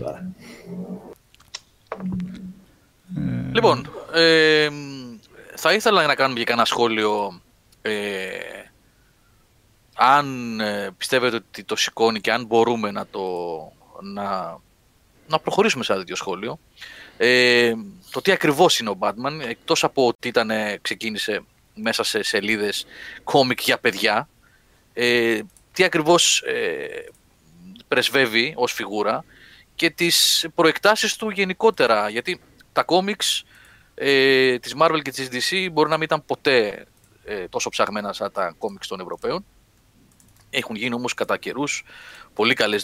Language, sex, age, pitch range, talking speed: Greek, male, 30-49, 110-185 Hz, 115 wpm